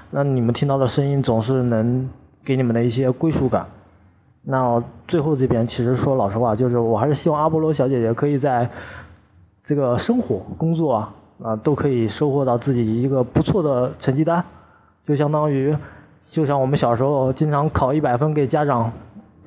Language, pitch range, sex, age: Chinese, 115-145 Hz, male, 20-39